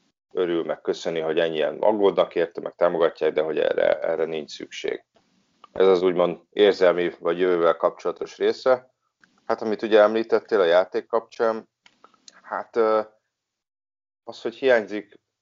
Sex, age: male, 30-49